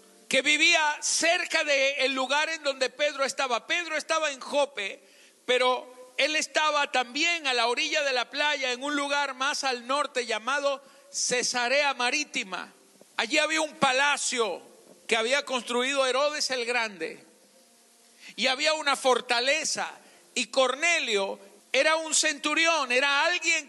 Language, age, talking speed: Spanish, 50-69, 135 wpm